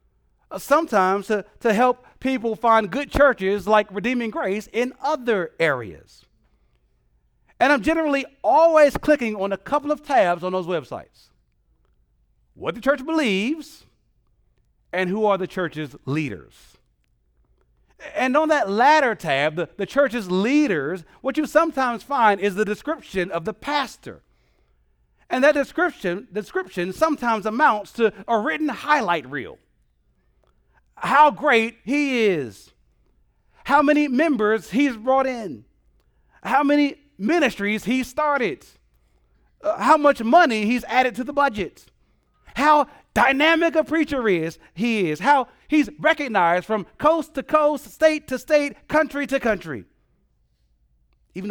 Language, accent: English, American